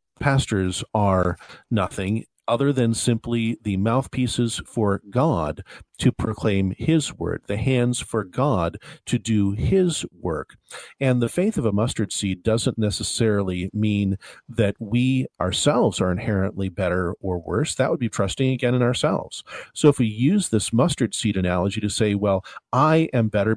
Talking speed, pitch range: 155 wpm, 100-125 Hz